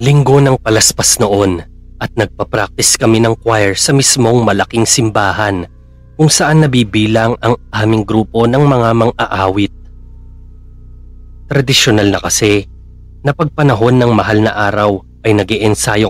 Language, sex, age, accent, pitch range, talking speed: Filipino, male, 30-49, native, 85-115 Hz, 125 wpm